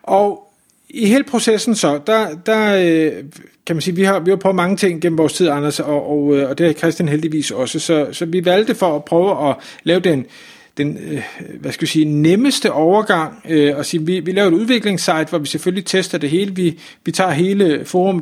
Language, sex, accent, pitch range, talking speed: Danish, male, native, 155-195 Hz, 215 wpm